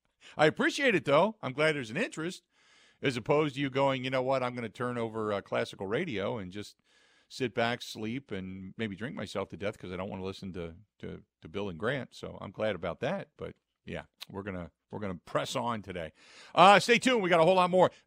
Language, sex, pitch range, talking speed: English, male, 115-160 Hz, 230 wpm